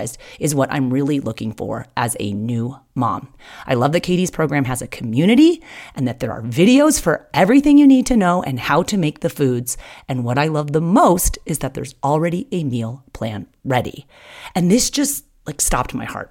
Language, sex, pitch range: English, female, 130-200 Hz